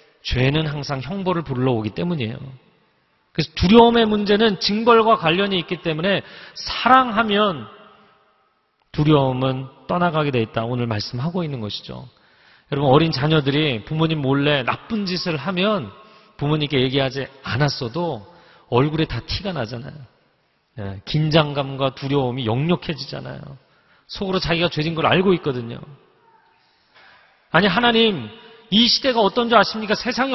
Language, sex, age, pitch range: Korean, male, 40-59, 145-225 Hz